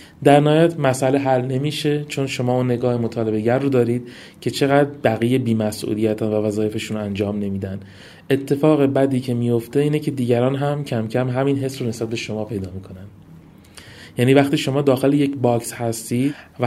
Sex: male